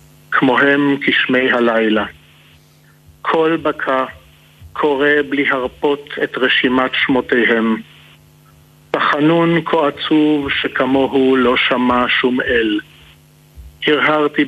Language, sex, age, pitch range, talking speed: Hebrew, male, 50-69, 115-140 Hz, 85 wpm